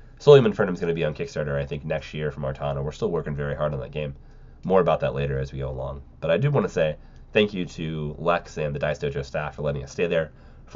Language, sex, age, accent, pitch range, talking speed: English, male, 30-49, American, 70-105 Hz, 285 wpm